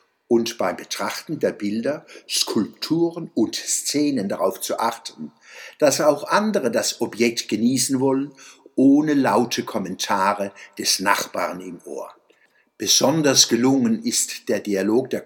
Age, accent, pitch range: 60-79, German, 115-170 Hz